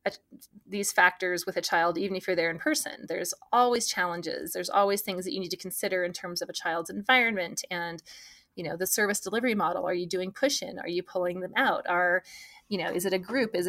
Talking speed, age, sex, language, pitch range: 230 wpm, 20-39, female, English, 180-210 Hz